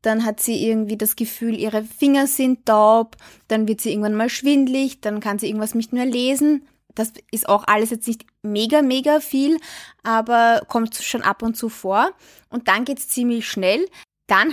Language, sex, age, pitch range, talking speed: German, female, 20-39, 210-260 Hz, 190 wpm